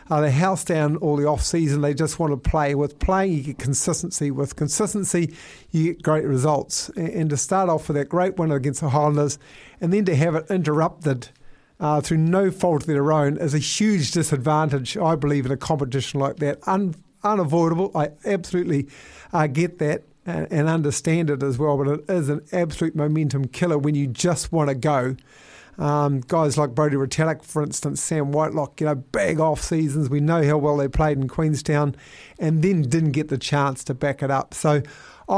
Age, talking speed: 50-69, 200 wpm